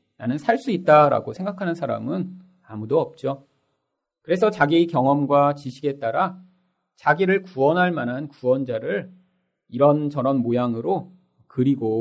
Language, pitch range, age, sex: Korean, 130-185 Hz, 40-59, male